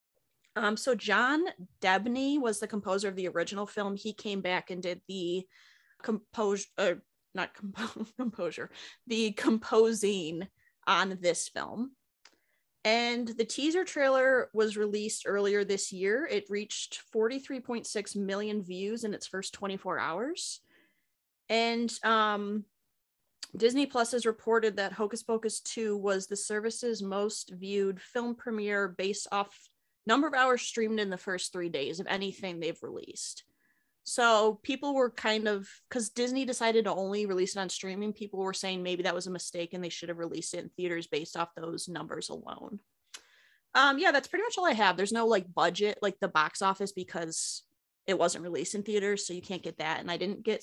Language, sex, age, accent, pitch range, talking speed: English, female, 20-39, American, 190-230 Hz, 170 wpm